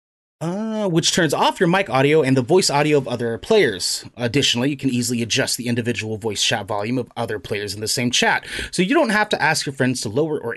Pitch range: 120-155 Hz